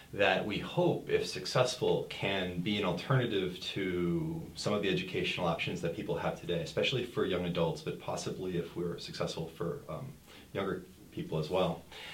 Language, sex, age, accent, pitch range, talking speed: English, male, 30-49, American, 90-120 Hz, 170 wpm